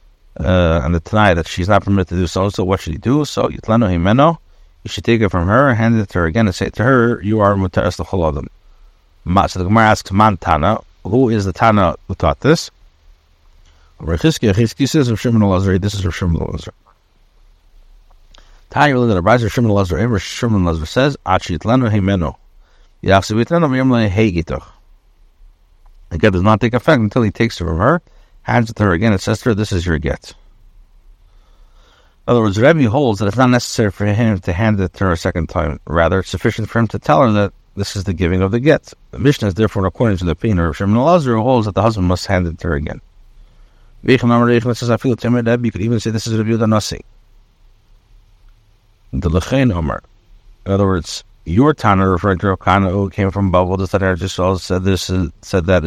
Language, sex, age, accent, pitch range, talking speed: English, male, 60-79, American, 90-115 Hz, 175 wpm